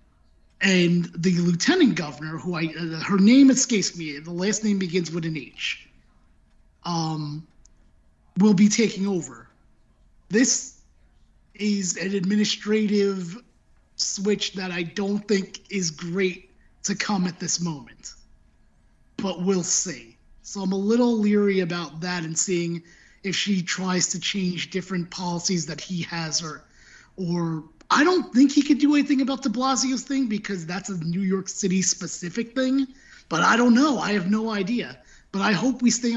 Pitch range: 170-205 Hz